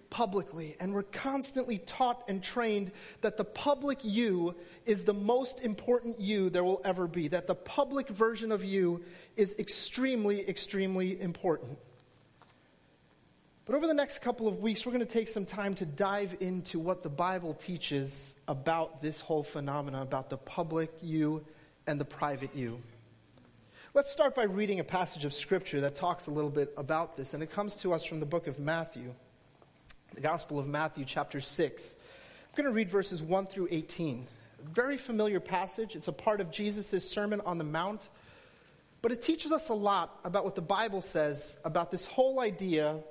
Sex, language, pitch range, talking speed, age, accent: male, English, 160-215 Hz, 180 wpm, 30-49, American